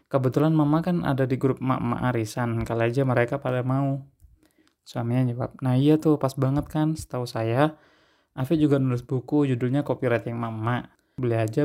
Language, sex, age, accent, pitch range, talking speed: Indonesian, male, 20-39, native, 125-145 Hz, 165 wpm